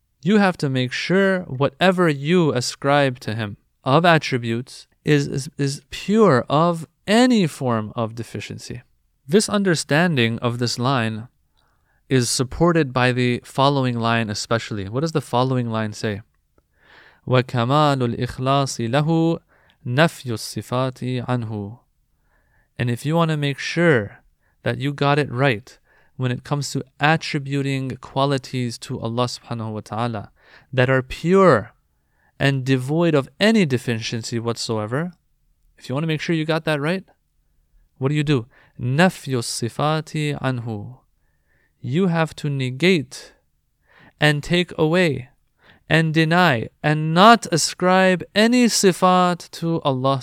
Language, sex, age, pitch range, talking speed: English, male, 30-49, 120-160 Hz, 130 wpm